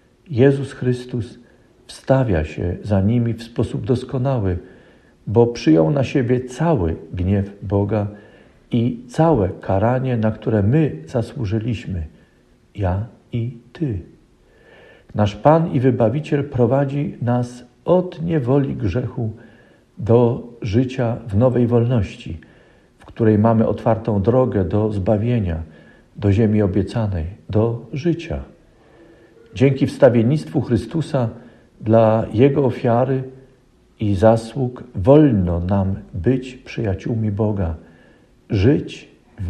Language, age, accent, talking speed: Polish, 50-69, native, 100 wpm